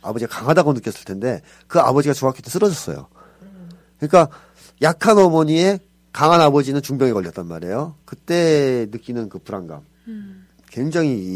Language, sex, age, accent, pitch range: Korean, male, 40-59, native, 95-150 Hz